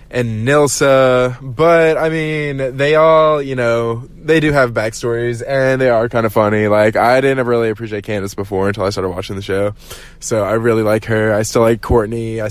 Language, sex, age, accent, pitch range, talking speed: English, male, 20-39, American, 105-130 Hz, 200 wpm